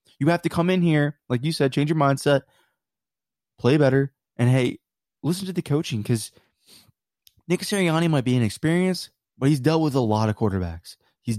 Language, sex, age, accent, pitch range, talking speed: English, male, 20-39, American, 115-160 Hz, 185 wpm